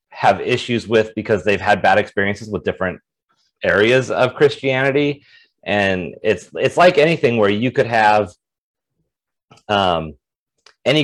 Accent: American